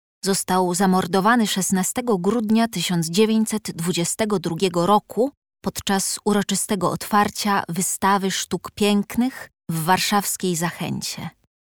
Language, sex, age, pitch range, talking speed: Polish, female, 20-39, 175-215 Hz, 75 wpm